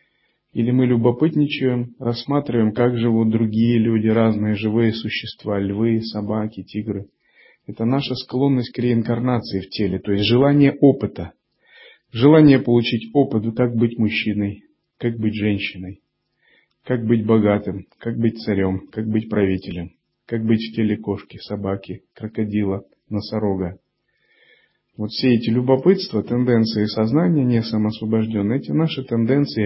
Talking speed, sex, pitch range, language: 125 wpm, male, 105-130 Hz, Russian